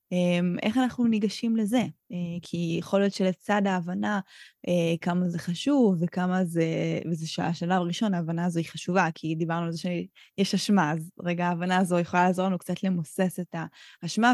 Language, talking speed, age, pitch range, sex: Hebrew, 160 wpm, 20-39, 175-200 Hz, female